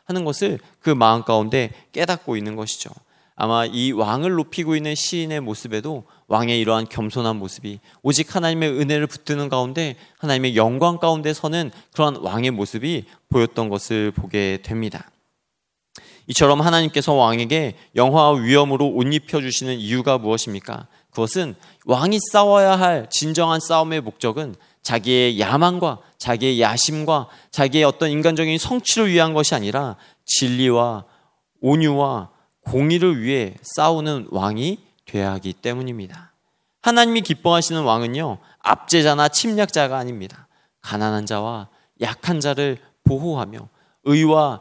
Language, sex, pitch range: Korean, male, 115-160 Hz